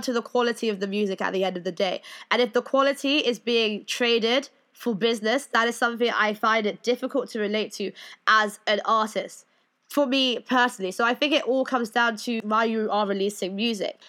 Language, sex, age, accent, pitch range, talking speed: English, female, 20-39, British, 210-275 Hz, 215 wpm